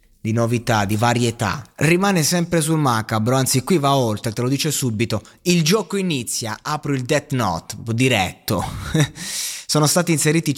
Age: 20-39